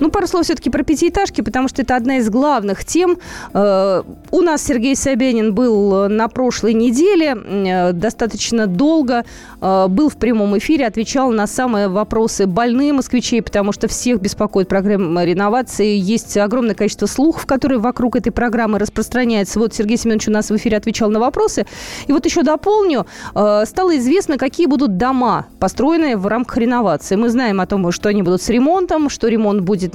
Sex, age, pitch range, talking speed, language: female, 20-39, 210-280 Hz, 165 wpm, Russian